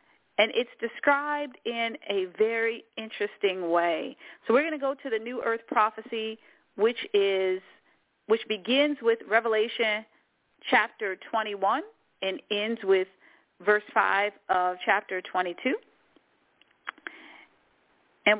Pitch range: 200-290 Hz